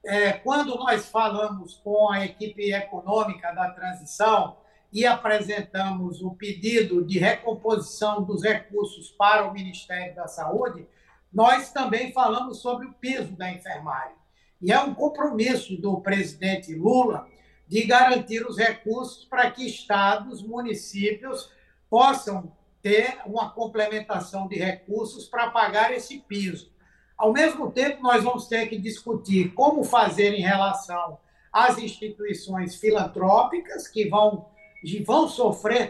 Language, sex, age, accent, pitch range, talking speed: English, male, 60-79, Brazilian, 200-245 Hz, 125 wpm